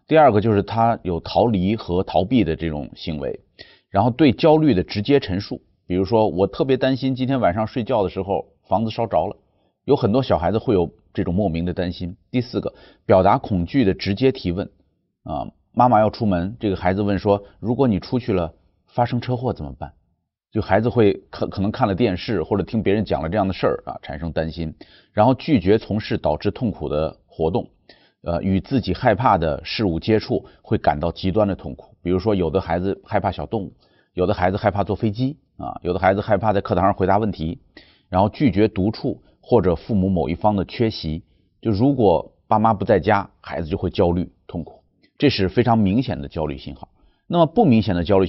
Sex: male